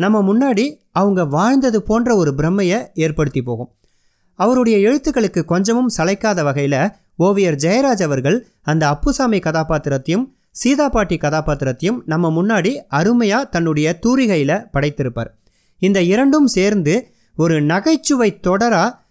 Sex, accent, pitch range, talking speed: male, native, 145-210 Hz, 105 wpm